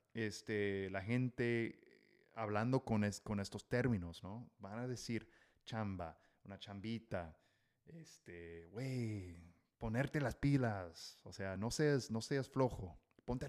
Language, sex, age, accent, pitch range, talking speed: English, male, 30-49, Mexican, 105-125 Hz, 130 wpm